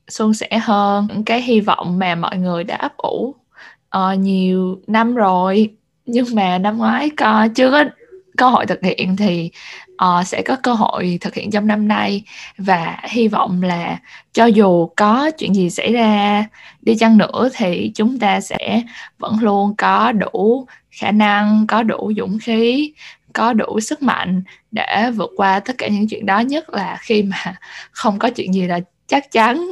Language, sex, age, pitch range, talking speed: Vietnamese, female, 10-29, 185-230 Hz, 180 wpm